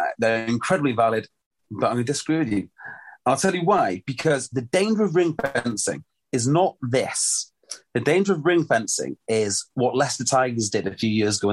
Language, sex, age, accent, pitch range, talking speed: English, male, 30-49, British, 120-190 Hz, 185 wpm